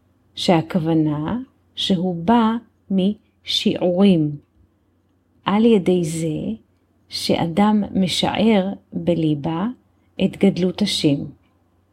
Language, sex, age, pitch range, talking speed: Hebrew, female, 40-59, 140-205 Hz, 65 wpm